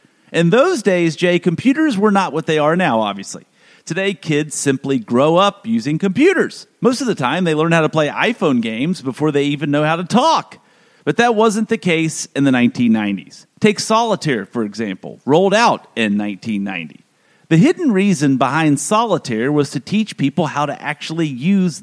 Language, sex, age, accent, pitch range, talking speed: English, male, 40-59, American, 150-230 Hz, 180 wpm